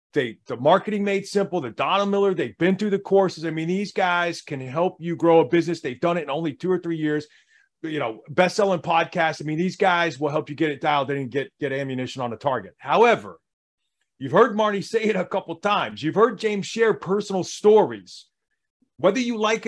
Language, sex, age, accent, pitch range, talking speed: English, male, 40-59, American, 160-210 Hz, 220 wpm